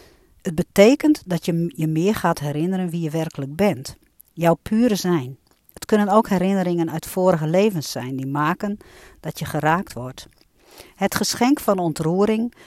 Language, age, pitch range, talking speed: Dutch, 50-69, 160-215 Hz, 155 wpm